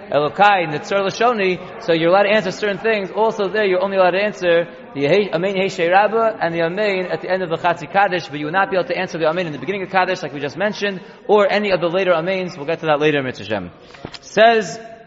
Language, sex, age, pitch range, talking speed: English, male, 30-49, 175-210 Hz, 240 wpm